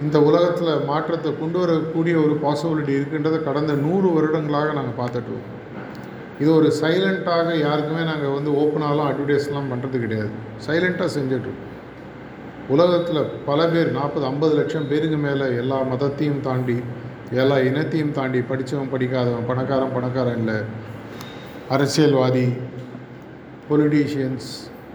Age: 50-69